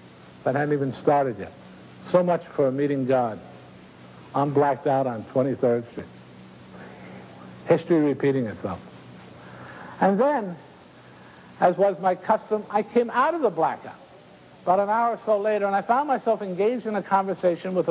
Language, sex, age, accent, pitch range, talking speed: English, male, 60-79, American, 120-195 Hz, 155 wpm